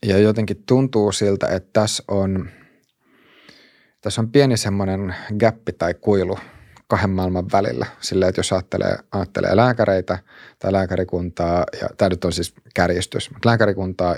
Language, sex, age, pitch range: Finnish, male, 30-49, 90-100 Hz